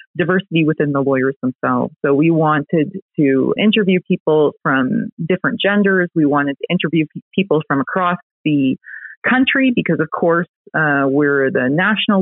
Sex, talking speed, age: female, 145 wpm, 30-49